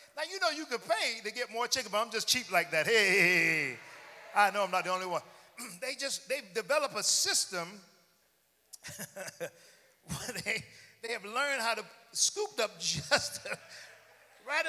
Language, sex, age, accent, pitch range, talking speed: English, male, 50-69, American, 185-260 Hz, 180 wpm